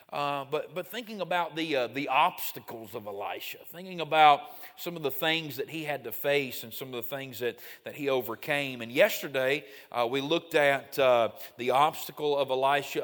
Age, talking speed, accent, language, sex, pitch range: 30-49, 195 wpm, American, English, male, 135-160 Hz